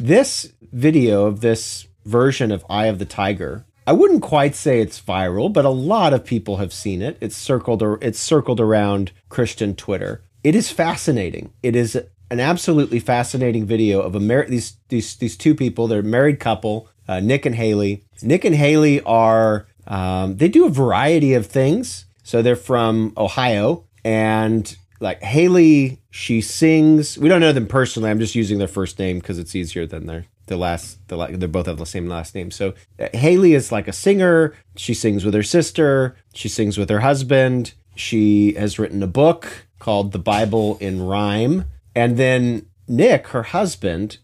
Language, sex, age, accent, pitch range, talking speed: English, male, 40-59, American, 100-125 Hz, 180 wpm